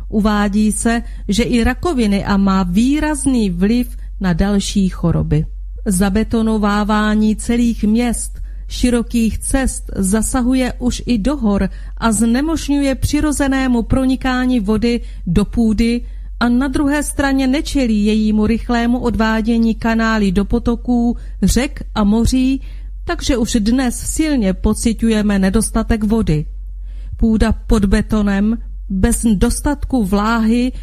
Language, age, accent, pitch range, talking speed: Czech, 40-59, native, 205-245 Hz, 110 wpm